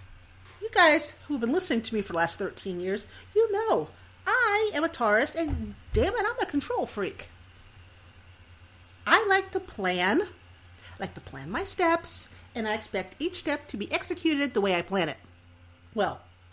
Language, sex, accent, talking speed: English, female, American, 180 wpm